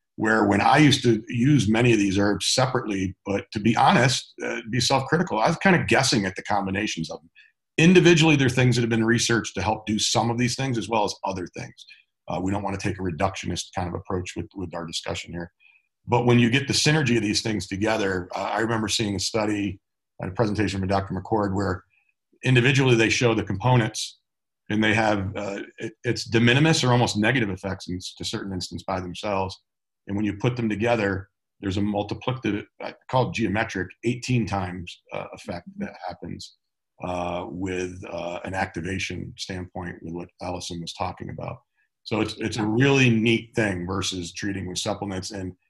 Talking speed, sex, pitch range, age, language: 195 wpm, male, 95-115 Hz, 40-59, English